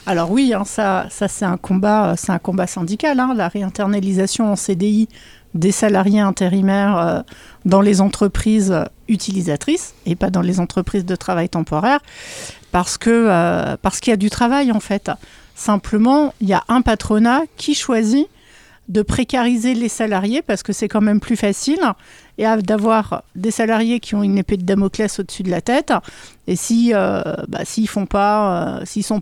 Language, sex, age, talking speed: French, female, 50-69, 170 wpm